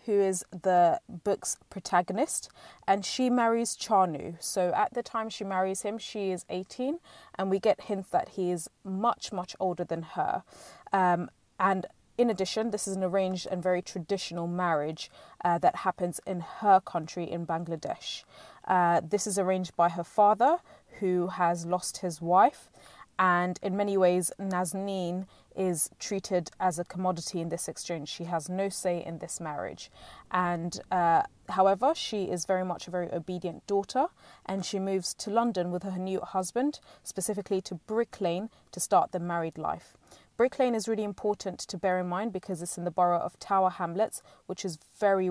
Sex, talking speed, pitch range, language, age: female, 175 wpm, 175-200 Hz, English, 20-39